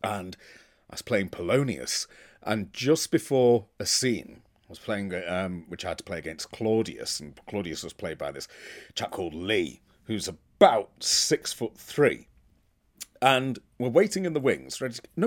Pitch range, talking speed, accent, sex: 105-155 Hz, 165 wpm, British, male